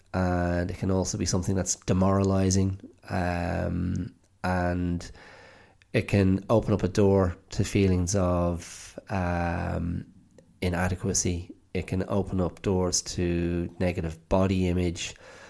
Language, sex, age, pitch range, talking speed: English, male, 30-49, 90-105 Hz, 115 wpm